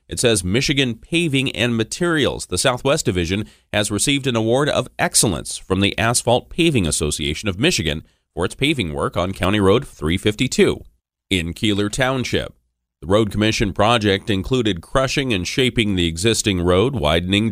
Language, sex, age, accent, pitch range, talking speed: English, male, 30-49, American, 90-120 Hz, 155 wpm